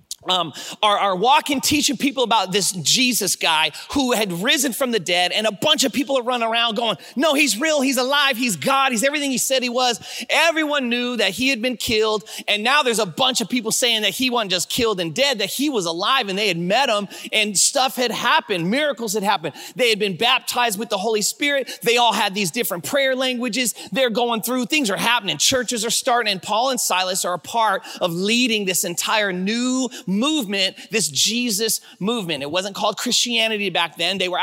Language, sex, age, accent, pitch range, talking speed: English, male, 30-49, American, 195-260 Hz, 220 wpm